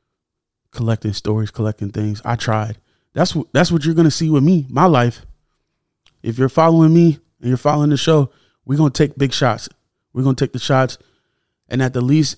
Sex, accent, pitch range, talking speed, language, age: male, American, 110-145 Hz, 195 wpm, English, 20-39